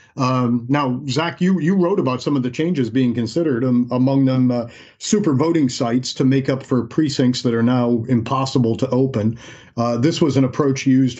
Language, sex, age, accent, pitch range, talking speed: English, male, 50-69, American, 110-130 Hz, 200 wpm